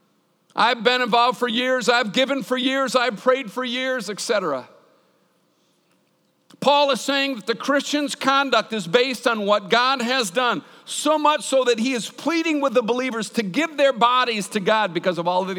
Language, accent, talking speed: English, American, 185 wpm